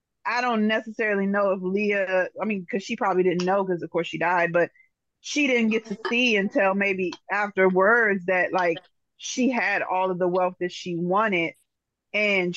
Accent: American